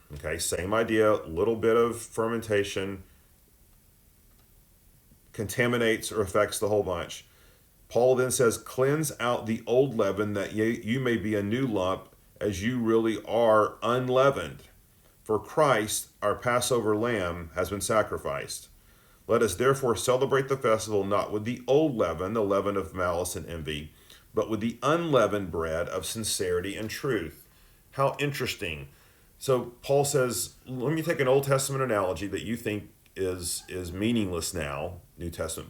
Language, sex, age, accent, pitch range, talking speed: English, male, 40-59, American, 90-120 Hz, 150 wpm